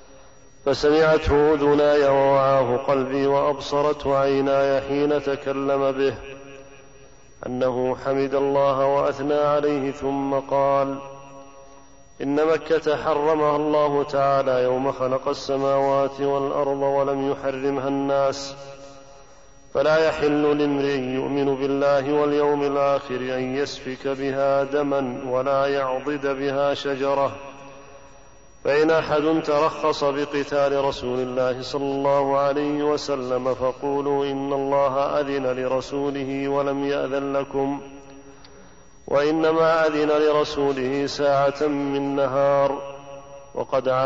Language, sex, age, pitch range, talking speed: Arabic, male, 40-59, 135-140 Hz, 95 wpm